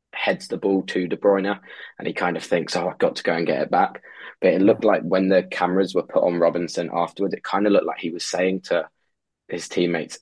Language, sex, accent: English, male, British